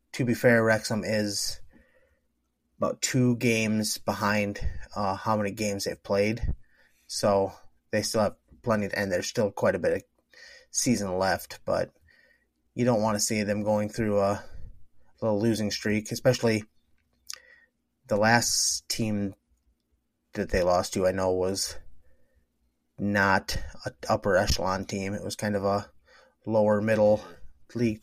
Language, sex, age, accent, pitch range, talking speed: English, male, 30-49, American, 100-115 Hz, 145 wpm